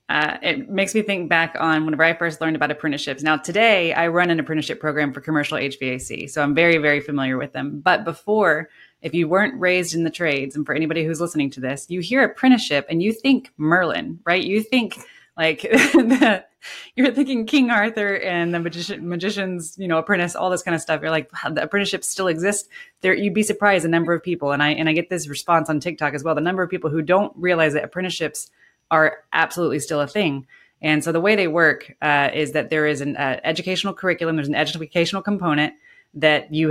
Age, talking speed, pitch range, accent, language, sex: 20-39, 220 wpm, 150-180 Hz, American, English, female